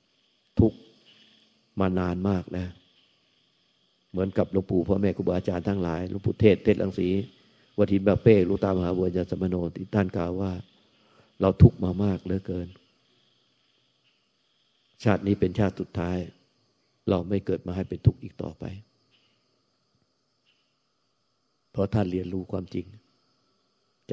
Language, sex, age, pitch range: Thai, male, 50-69, 90-105 Hz